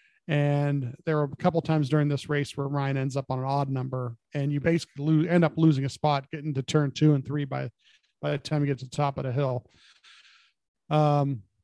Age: 40-59